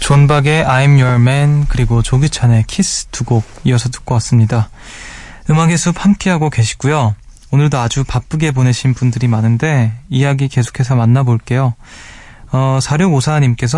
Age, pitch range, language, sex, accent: 20-39, 120-155 Hz, Korean, male, native